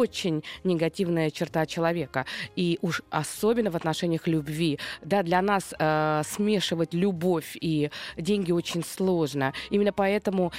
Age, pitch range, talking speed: 20-39, 160-190 Hz, 120 wpm